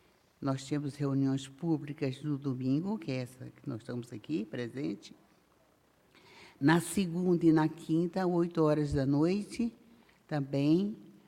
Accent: Brazilian